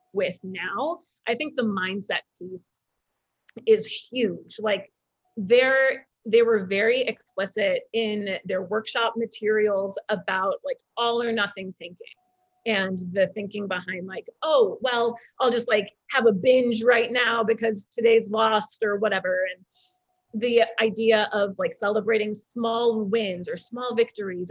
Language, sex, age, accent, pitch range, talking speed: English, female, 30-49, American, 205-245 Hz, 135 wpm